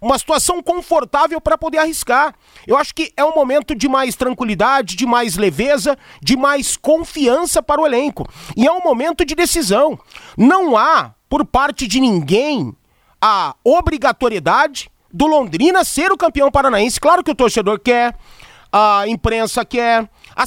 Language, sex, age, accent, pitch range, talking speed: Portuguese, male, 30-49, Brazilian, 225-320 Hz, 155 wpm